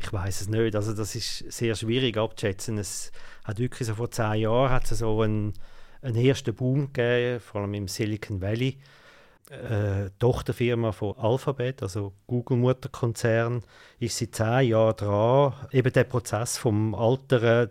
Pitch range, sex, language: 110-130 Hz, male, German